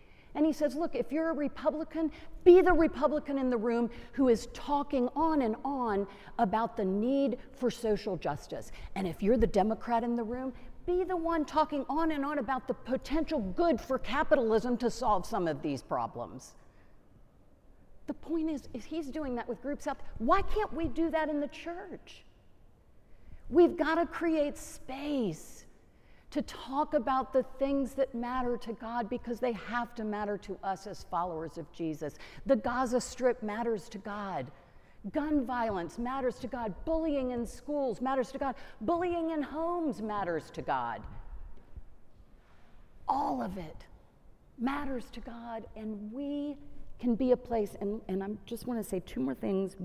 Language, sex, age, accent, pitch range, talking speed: English, female, 50-69, American, 210-290 Hz, 170 wpm